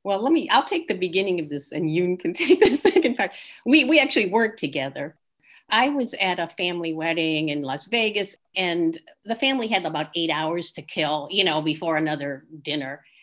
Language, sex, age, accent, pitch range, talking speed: English, female, 50-69, American, 150-190 Hz, 200 wpm